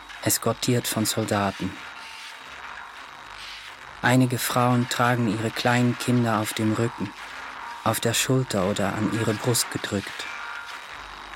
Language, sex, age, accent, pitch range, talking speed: German, male, 40-59, German, 105-120 Hz, 105 wpm